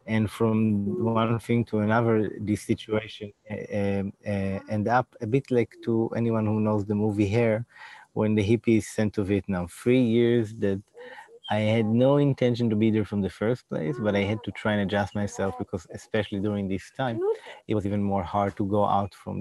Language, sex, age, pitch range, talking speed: English, male, 20-39, 100-115 Hz, 200 wpm